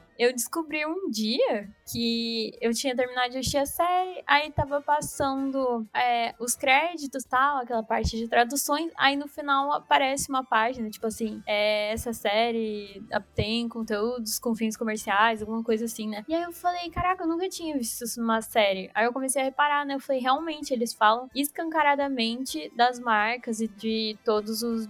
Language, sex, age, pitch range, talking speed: Portuguese, female, 10-29, 225-280 Hz, 175 wpm